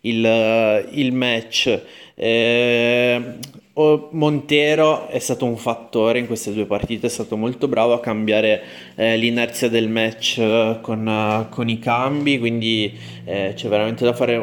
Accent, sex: native, male